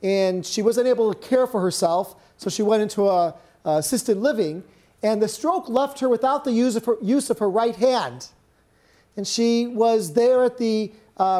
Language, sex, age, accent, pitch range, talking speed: English, male, 40-59, American, 210-250 Hz, 200 wpm